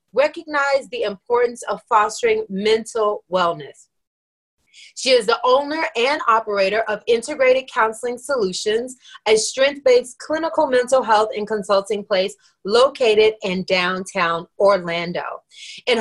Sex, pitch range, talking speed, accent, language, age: female, 205-280 Hz, 110 wpm, American, English, 30-49